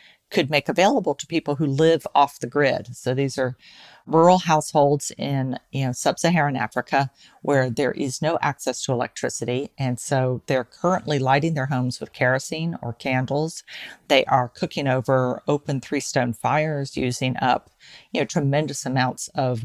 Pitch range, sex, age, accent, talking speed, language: 135-160 Hz, female, 50-69, American, 160 wpm, English